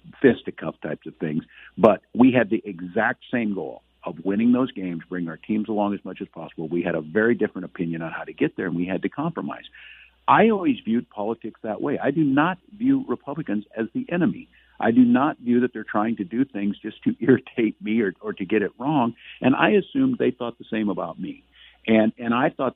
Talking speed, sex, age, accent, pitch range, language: 225 wpm, male, 50-69, American, 95-125 Hz, English